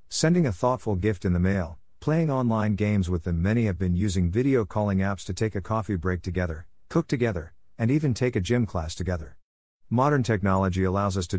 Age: 50-69